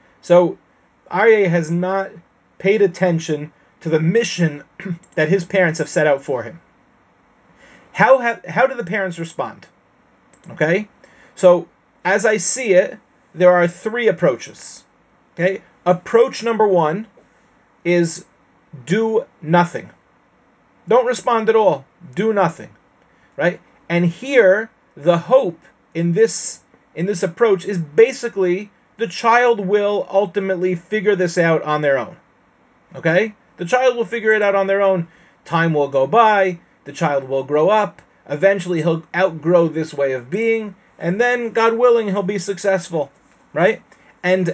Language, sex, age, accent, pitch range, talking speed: English, male, 30-49, American, 170-215 Hz, 140 wpm